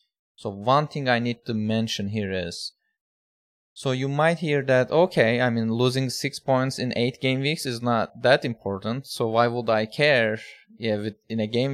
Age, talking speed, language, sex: 20-39, 195 wpm, English, male